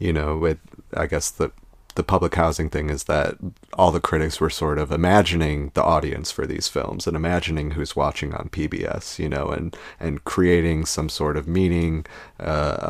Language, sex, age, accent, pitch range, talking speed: English, male, 30-49, American, 80-95 Hz, 185 wpm